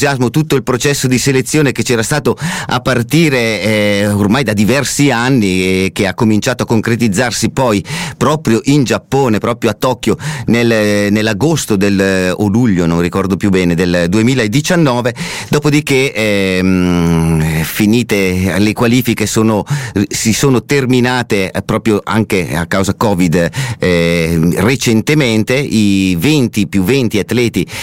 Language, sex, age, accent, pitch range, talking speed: Italian, male, 30-49, native, 95-125 Hz, 130 wpm